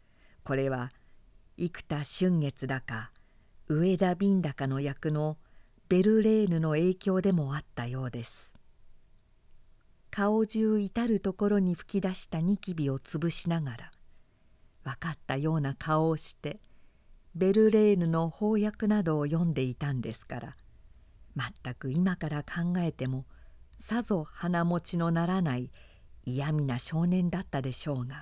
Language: Japanese